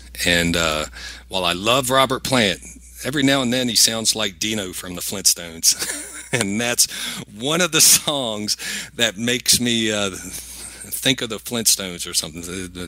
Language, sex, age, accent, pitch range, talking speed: English, male, 40-59, American, 90-125 Hz, 160 wpm